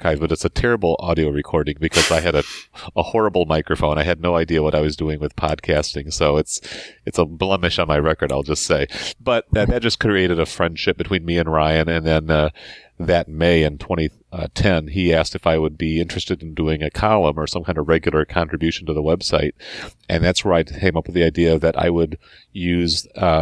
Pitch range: 80-90 Hz